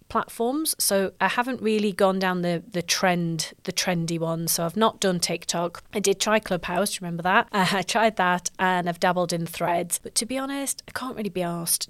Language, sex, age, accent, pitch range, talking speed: English, female, 30-49, British, 175-210 Hz, 210 wpm